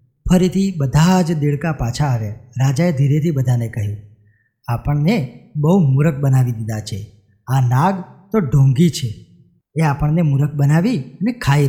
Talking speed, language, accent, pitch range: 135 wpm, Gujarati, native, 130-175 Hz